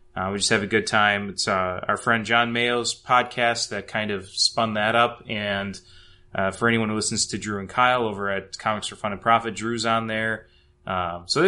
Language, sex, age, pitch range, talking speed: English, male, 20-39, 105-120 Hz, 215 wpm